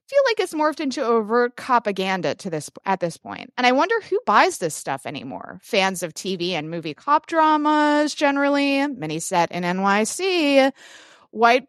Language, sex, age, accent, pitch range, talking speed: English, female, 30-49, American, 195-280 Hz, 170 wpm